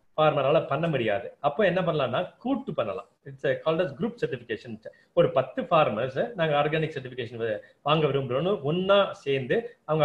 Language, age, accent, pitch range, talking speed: Tamil, 30-49, native, 130-195 Hz, 135 wpm